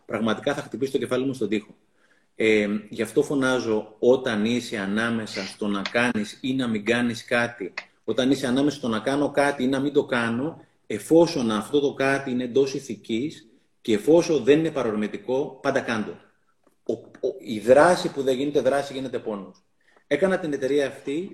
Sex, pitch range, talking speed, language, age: male, 125-145 Hz, 170 wpm, Greek, 30-49